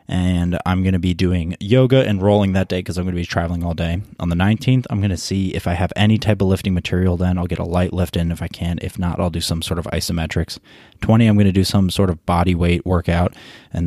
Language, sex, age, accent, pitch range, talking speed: English, male, 20-39, American, 85-100 Hz, 275 wpm